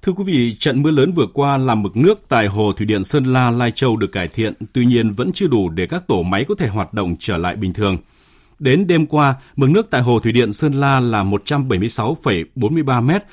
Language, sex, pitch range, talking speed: Vietnamese, male, 105-150 Hz, 235 wpm